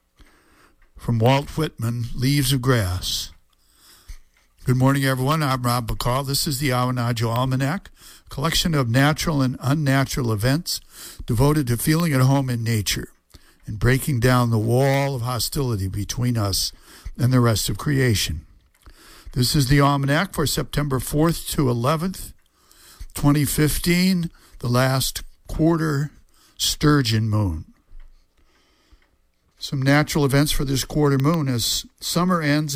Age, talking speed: 60-79, 130 wpm